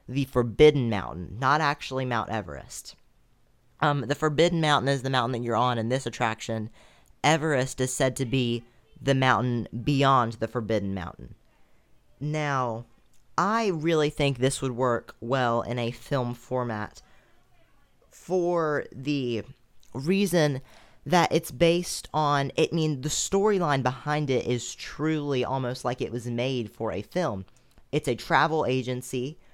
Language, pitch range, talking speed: English, 115-140 Hz, 145 wpm